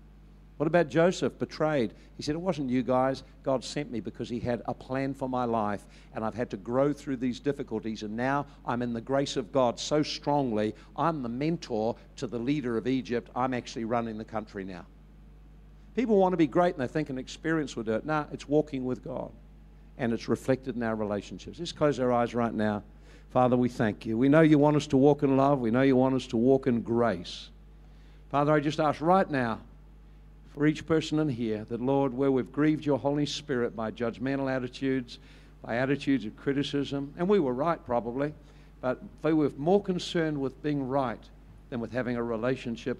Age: 50-69